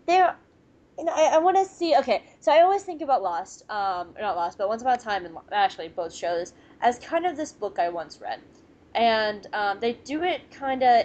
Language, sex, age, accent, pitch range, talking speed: English, female, 10-29, American, 200-270 Hz, 215 wpm